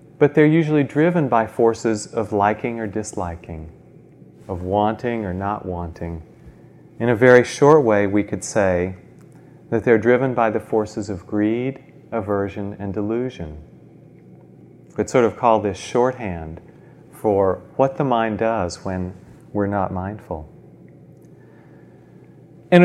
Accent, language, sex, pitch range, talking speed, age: American, English, male, 100-145 Hz, 135 wpm, 40-59